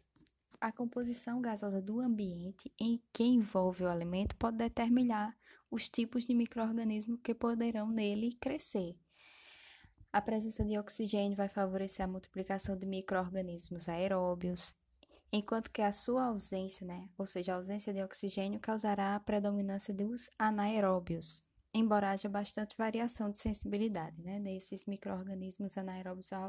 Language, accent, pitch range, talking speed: Portuguese, Brazilian, 185-220 Hz, 135 wpm